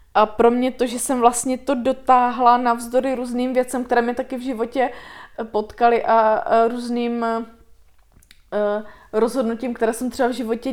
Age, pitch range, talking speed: 20-39, 225-245 Hz, 145 wpm